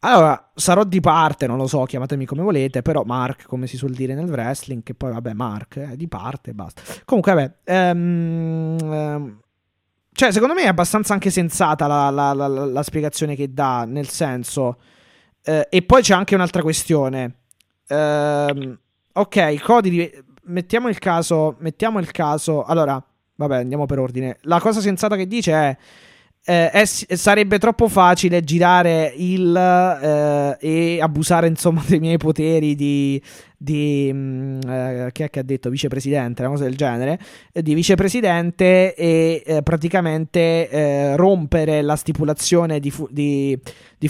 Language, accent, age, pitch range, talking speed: Italian, native, 20-39, 140-175 Hz, 160 wpm